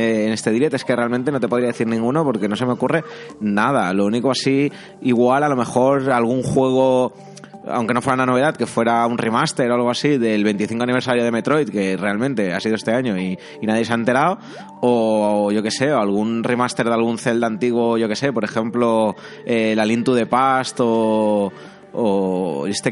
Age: 20-39